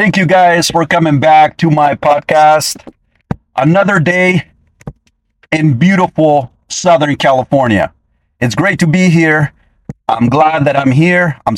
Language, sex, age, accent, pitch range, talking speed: English, male, 40-59, American, 120-175 Hz, 135 wpm